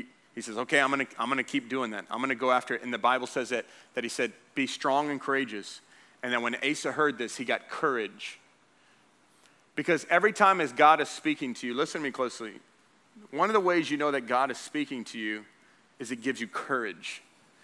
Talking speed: 225 wpm